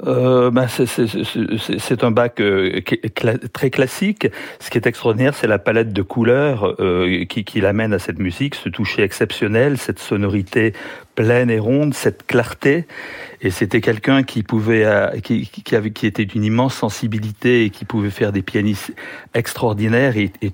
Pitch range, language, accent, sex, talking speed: 110-130 Hz, French, French, male, 180 wpm